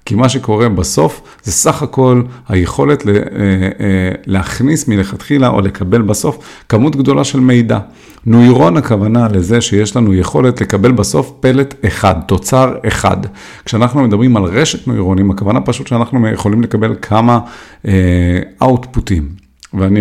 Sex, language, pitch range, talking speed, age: male, Hebrew, 95-125 Hz, 130 wpm, 50-69